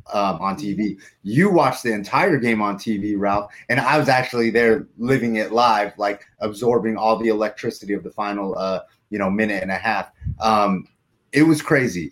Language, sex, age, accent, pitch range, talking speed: English, male, 30-49, American, 105-125 Hz, 190 wpm